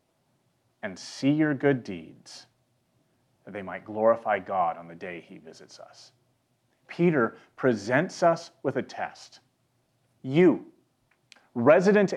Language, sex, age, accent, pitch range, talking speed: English, male, 30-49, American, 130-190 Hz, 120 wpm